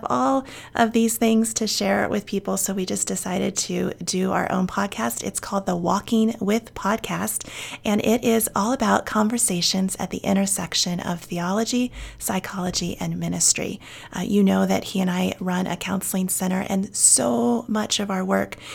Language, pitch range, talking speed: English, 185-215 Hz, 175 wpm